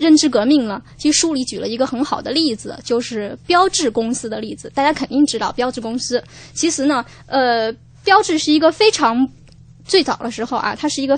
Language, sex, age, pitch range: Chinese, female, 10-29, 240-305 Hz